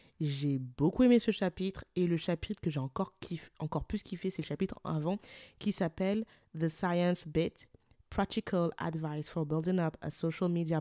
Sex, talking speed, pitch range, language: female, 180 wpm, 160-190 Hz, French